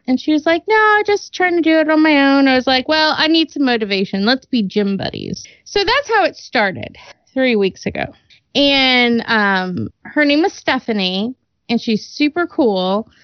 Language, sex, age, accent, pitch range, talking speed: English, female, 20-39, American, 225-315 Hz, 200 wpm